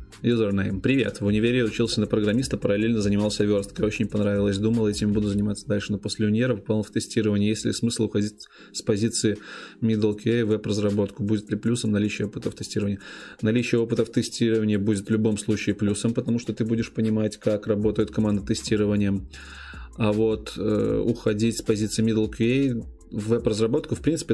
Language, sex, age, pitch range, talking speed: Russian, male, 20-39, 100-115 Hz, 170 wpm